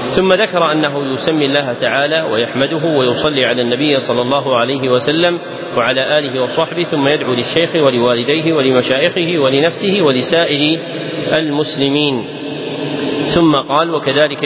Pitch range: 135-160 Hz